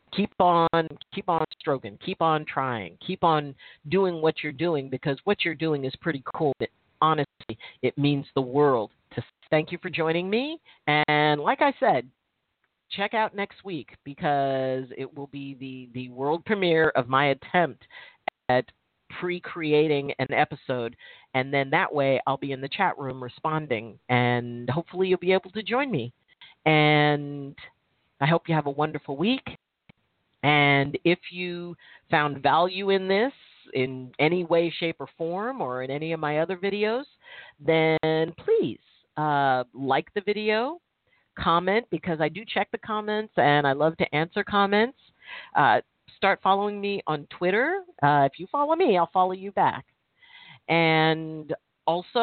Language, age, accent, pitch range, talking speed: English, 40-59, American, 140-190 Hz, 155 wpm